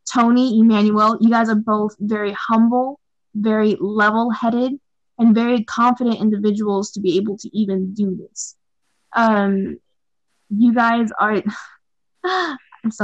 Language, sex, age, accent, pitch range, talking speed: English, female, 10-29, American, 195-235 Hz, 120 wpm